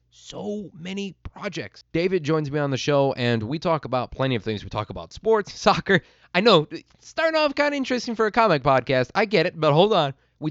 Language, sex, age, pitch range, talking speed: English, male, 20-39, 110-165 Hz, 225 wpm